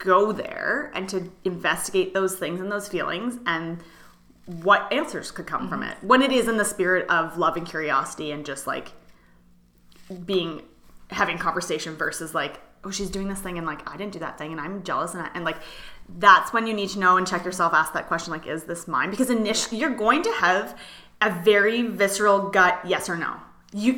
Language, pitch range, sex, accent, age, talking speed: English, 175-220 Hz, female, American, 20-39, 210 wpm